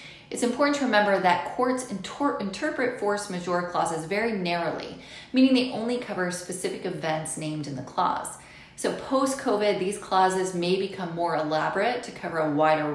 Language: English